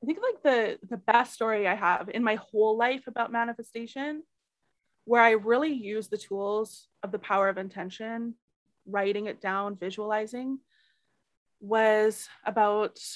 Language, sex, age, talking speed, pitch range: English, female, 20-39, 145 wpm, 200-235 Hz